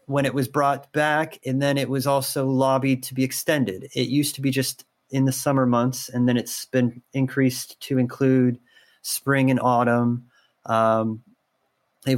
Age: 30-49